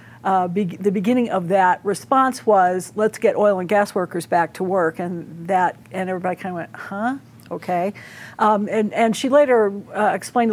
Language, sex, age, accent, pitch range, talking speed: English, female, 50-69, American, 185-220 Hz, 190 wpm